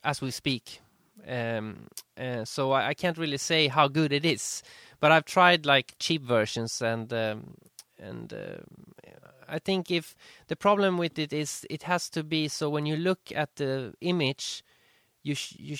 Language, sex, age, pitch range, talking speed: English, male, 20-39, 120-150 Hz, 180 wpm